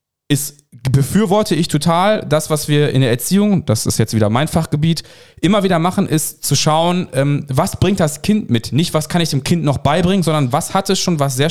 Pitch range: 135-165 Hz